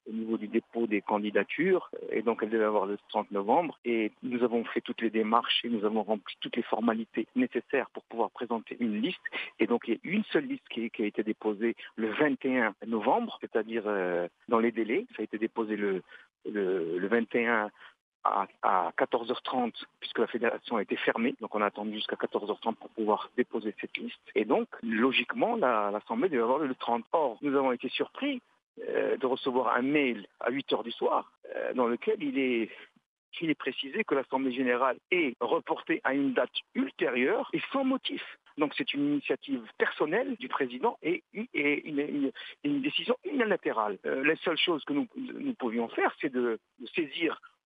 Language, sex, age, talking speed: Arabic, male, 50-69, 190 wpm